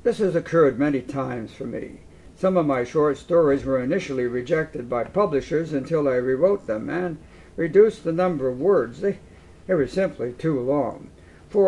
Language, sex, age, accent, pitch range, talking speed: English, male, 60-79, American, 130-180 Hz, 175 wpm